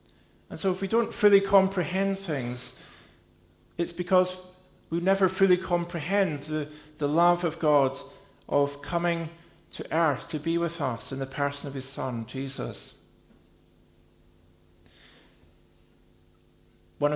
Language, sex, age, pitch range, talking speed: English, male, 50-69, 135-175 Hz, 120 wpm